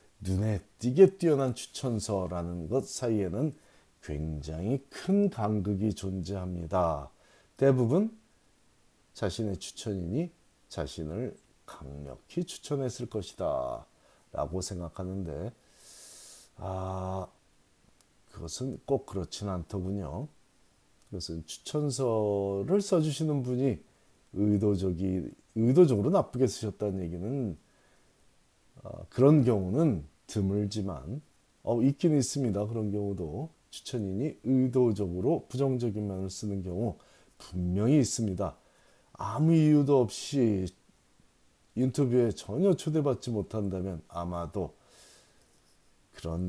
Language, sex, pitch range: Korean, male, 95-135 Hz